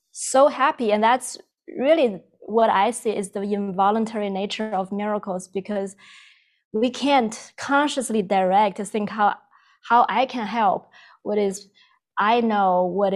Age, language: 20-39, English